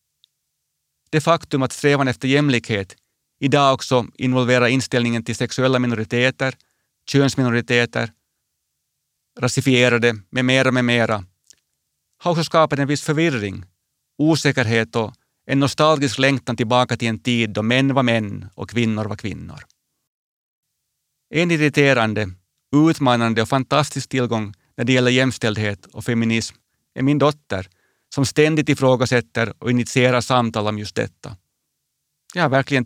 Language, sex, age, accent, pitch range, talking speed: Swedish, male, 30-49, Finnish, 115-135 Hz, 130 wpm